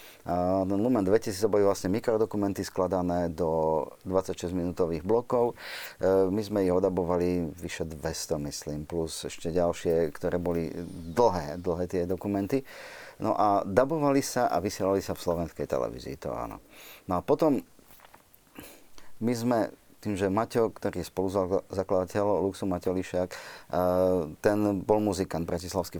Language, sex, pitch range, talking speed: Slovak, male, 90-105 Hz, 130 wpm